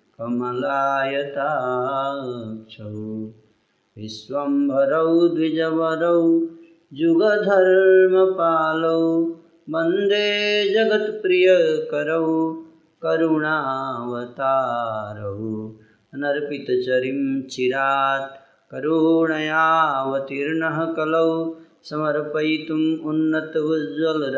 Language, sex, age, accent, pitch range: Hindi, male, 30-49, native, 120-165 Hz